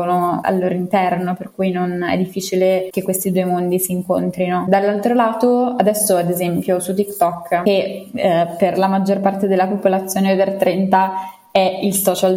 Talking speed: 170 wpm